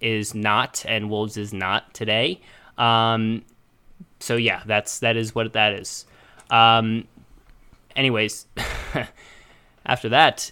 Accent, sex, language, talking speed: American, male, English, 115 wpm